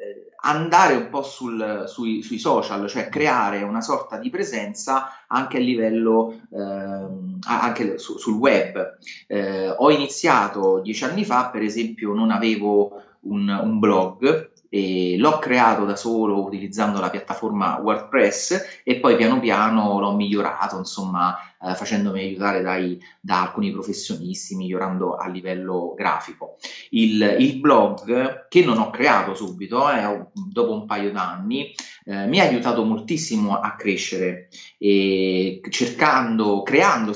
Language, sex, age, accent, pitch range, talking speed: Italian, male, 30-49, native, 95-125 Hz, 135 wpm